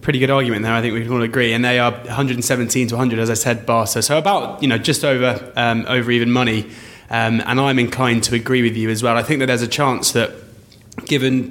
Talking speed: 250 wpm